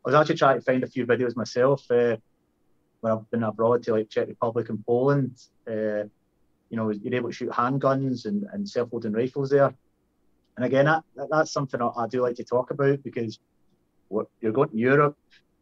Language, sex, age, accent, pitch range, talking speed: English, male, 30-49, British, 115-140 Hz, 195 wpm